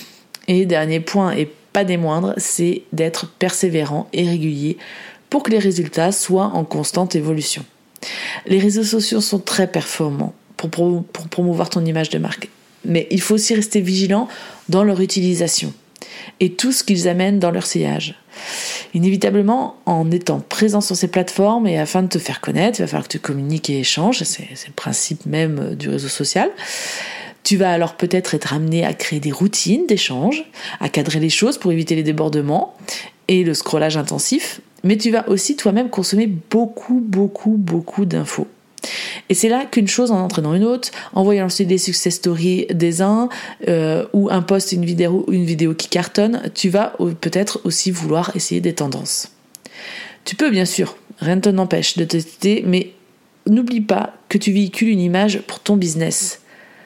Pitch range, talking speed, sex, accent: 170-205 Hz, 175 wpm, female, French